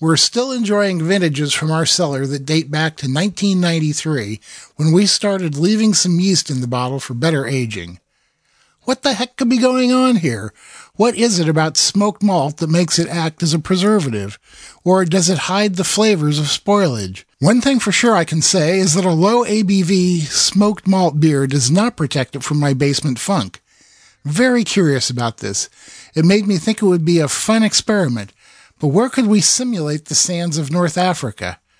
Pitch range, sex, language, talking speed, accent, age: 145-195 Hz, male, English, 190 wpm, American, 50-69